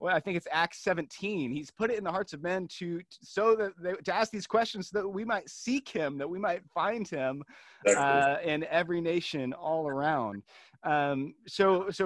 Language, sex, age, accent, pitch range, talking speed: English, male, 30-49, American, 150-190 Hz, 215 wpm